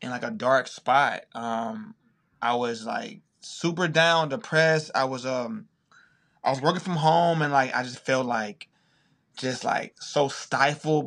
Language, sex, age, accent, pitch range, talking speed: English, male, 20-39, American, 130-170 Hz, 165 wpm